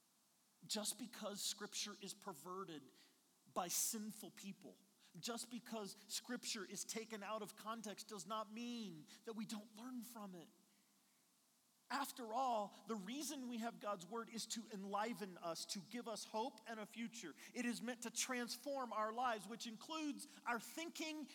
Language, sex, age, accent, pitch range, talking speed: English, male, 40-59, American, 210-265 Hz, 155 wpm